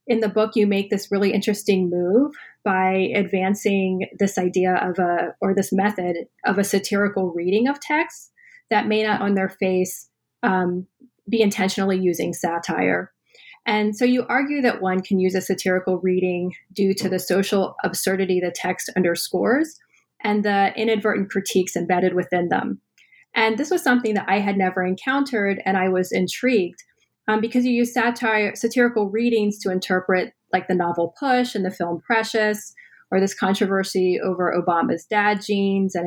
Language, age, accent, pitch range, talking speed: English, 30-49, American, 185-235 Hz, 165 wpm